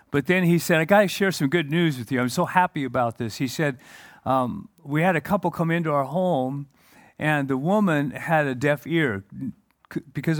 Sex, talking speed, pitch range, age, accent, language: male, 215 wpm, 140-190 Hz, 50-69, American, English